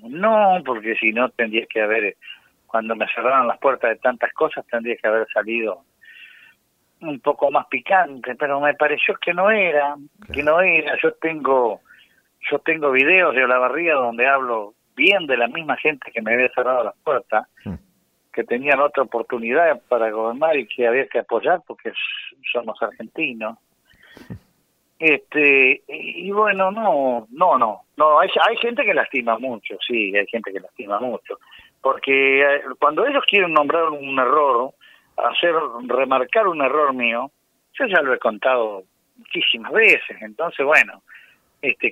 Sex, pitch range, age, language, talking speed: male, 125-185 Hz, 50-69, Spanish, 155 wpm